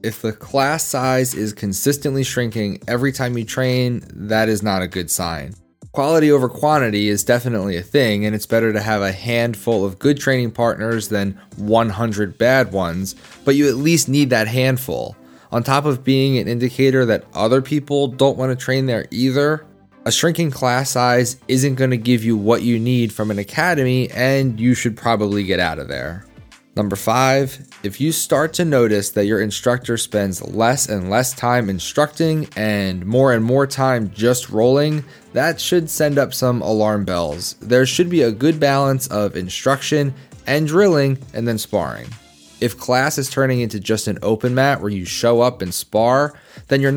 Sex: male